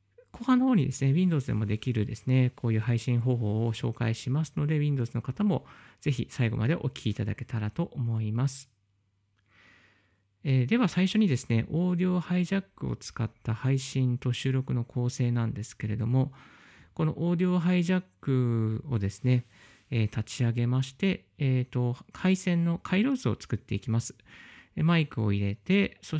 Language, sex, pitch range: Japanese, male, 115-165 Hz